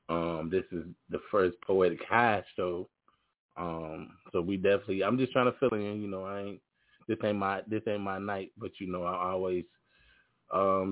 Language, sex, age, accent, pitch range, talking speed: English, male, 20-39, American, 90-105 Hz, 190 wpm